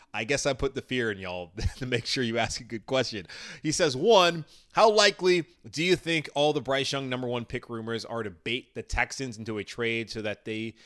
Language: English